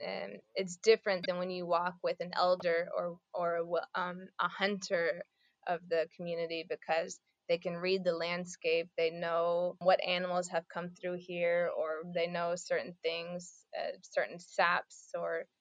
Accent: American